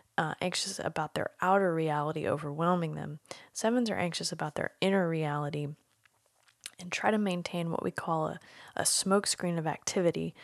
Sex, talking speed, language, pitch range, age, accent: female, 155 wpm, English, 155-180 Hz, 20-39, American